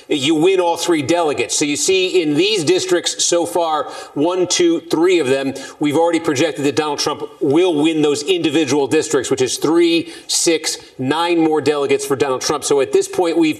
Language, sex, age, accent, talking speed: English, male, 40-59, American, 195 wpm